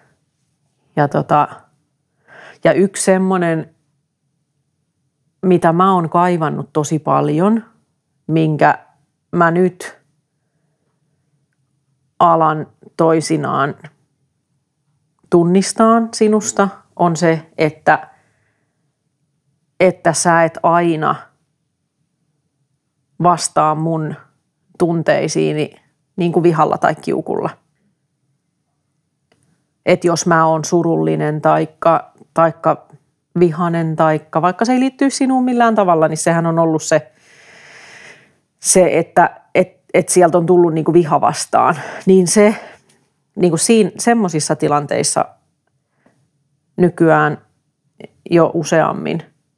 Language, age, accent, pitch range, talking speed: Finnish, 40-59, native, 145-175 Hz, 85 wpm